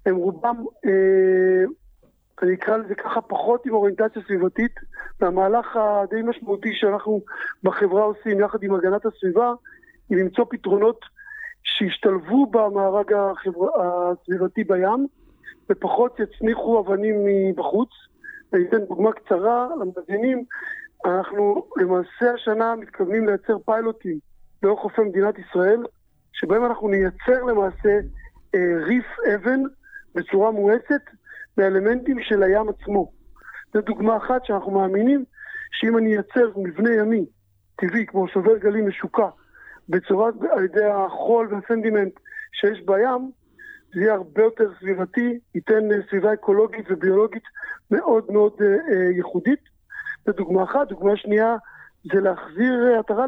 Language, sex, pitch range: Hebrew, male, 195-240 Hz